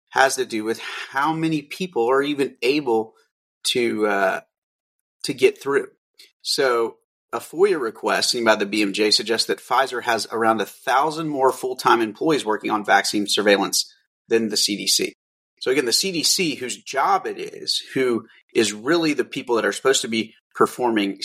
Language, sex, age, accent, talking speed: English, male, 30-49, American, 170 wpm